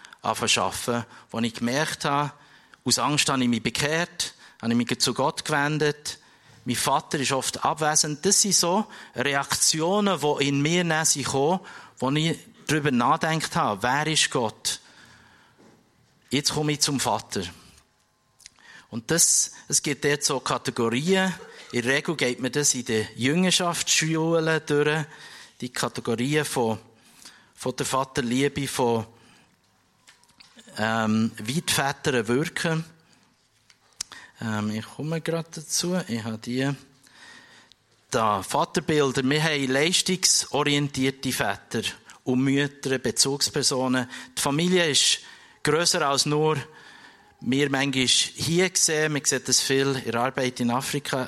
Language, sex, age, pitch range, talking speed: German, male, 50-69, 125-155 Hz, 125 wpm